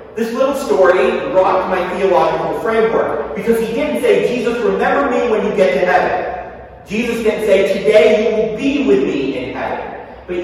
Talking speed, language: 180 wpm, English